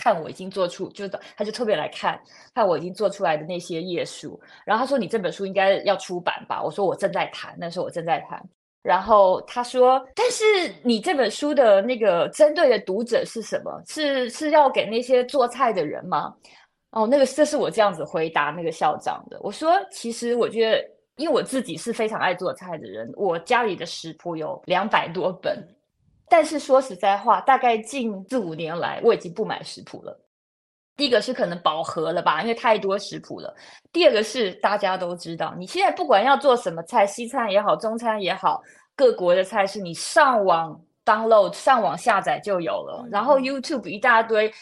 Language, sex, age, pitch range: Chinese, female, 20-39, 195-275 Hz